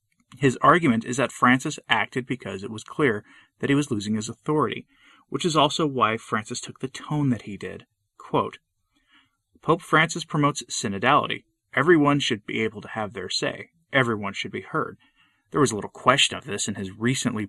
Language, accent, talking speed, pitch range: English, American, 185 wpm, 105-140 Hz